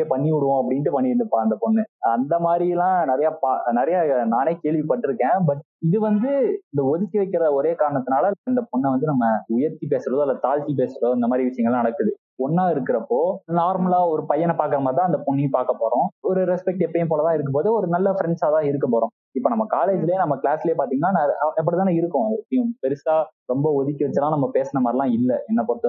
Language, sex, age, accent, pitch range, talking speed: Tamil, male, 20-39, native, 135-195 Hz, 70 wpm